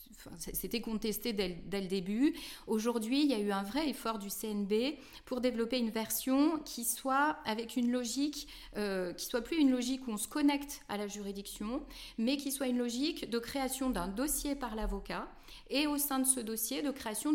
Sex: female